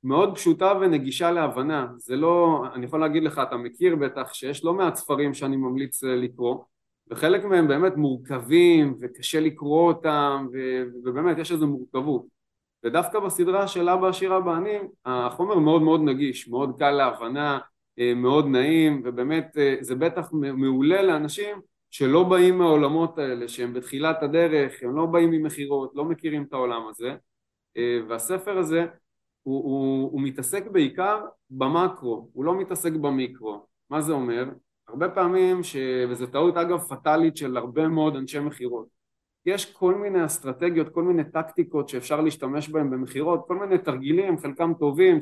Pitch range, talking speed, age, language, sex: 130-175 Hz, 145 wpm, 30-49, Hebrew, male